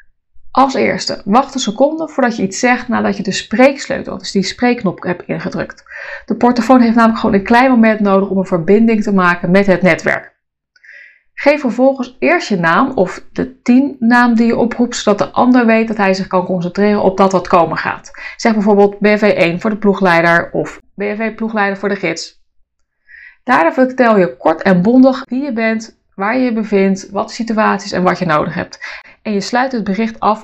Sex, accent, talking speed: female, Dutch, 195 wpm